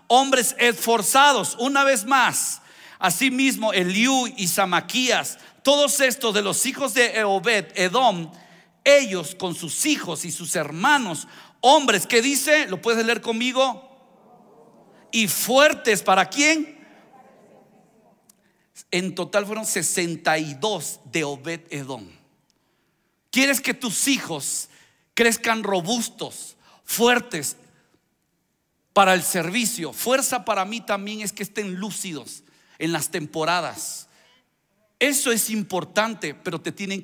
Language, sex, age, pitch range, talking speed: Spanish, male, 50-69, 170-230 Hz, 110 wpm